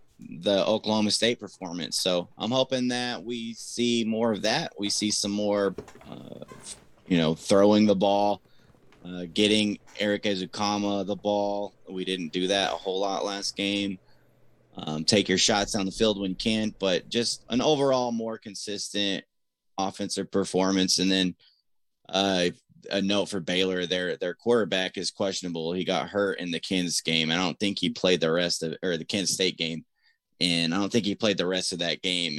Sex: male